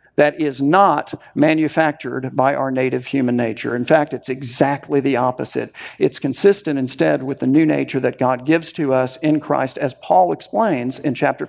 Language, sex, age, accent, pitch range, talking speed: English, male, 50-69, American, 125-155 Hz, 180 wpm